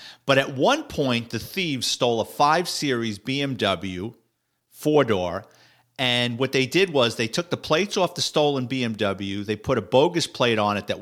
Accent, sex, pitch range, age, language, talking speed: American, male, 110-145 Hz, 50-69, English, 175 wpm